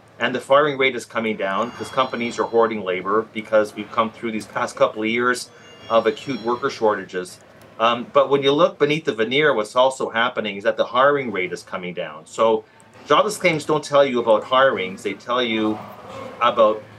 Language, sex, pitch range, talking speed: English, male, 110-135 Hz, 200 wpm